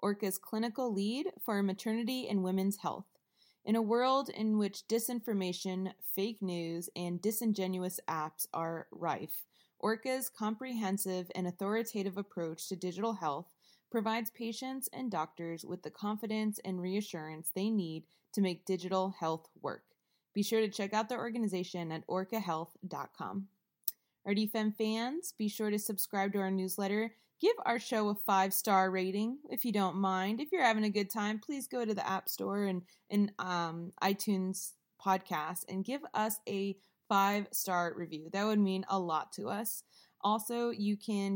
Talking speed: 155 wpm